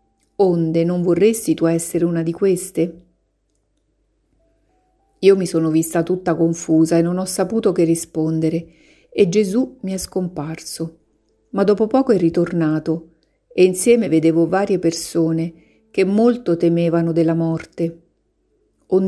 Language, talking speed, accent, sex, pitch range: Italian, 130 wpm, native, female, 165-195 Hz